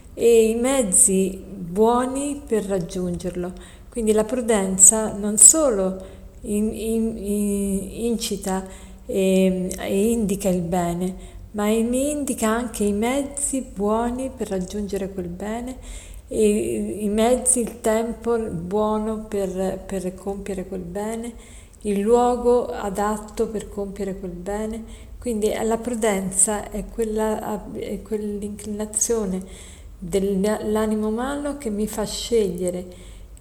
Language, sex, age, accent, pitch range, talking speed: Italian, female, 50-69, native, 190-225 Hz, 100 wpm